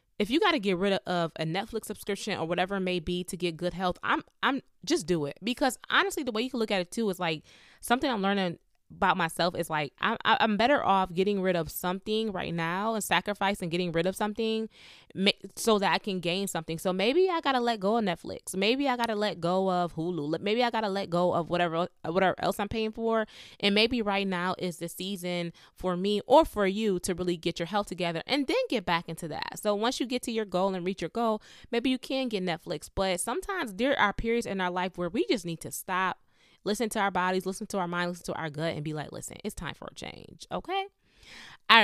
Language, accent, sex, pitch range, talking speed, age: English, American, female, 175-230 Hz, 245 wpm, 20-39